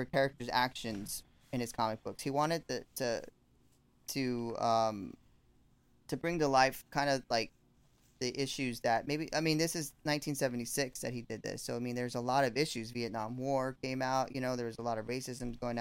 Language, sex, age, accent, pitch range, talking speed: English, male, 20-39, American, 120-145 Hz, 200 wpm